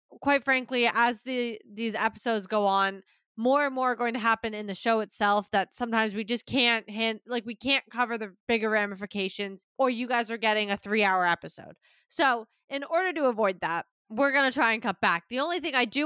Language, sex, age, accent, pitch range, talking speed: English, female, 20-39, American, 210-265 Hz, 220 wpm